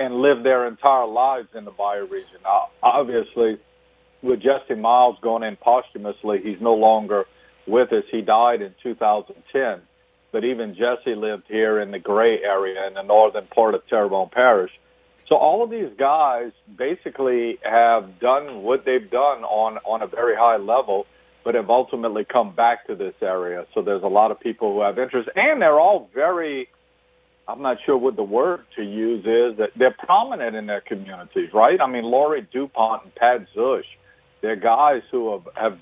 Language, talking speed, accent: English, 180 wpm, American